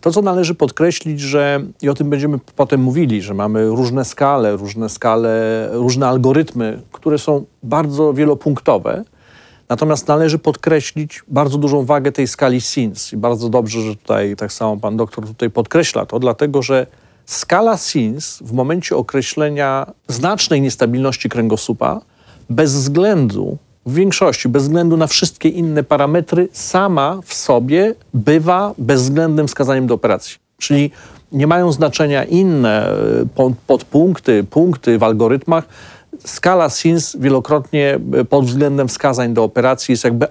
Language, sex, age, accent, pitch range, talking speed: Polish, male, 40-59, native, 120-155 Hz, 135 wpm